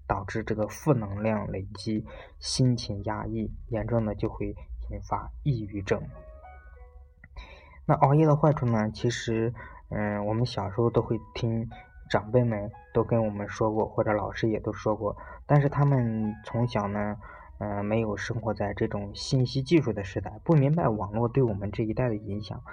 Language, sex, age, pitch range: Chinese, male, 20-39, 105-135 Hz